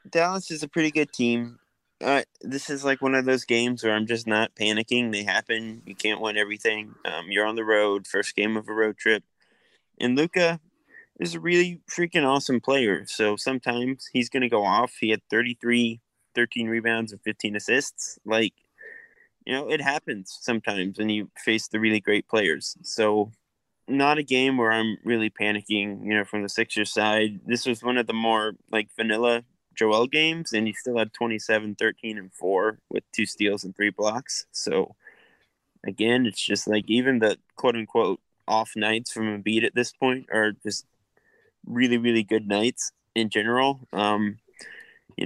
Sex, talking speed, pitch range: male, 180 wpm, 105-125 Hz